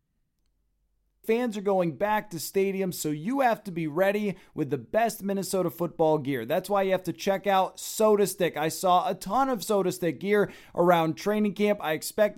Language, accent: English, American